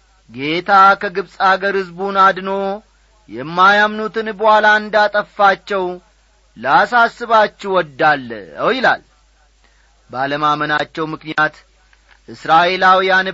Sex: male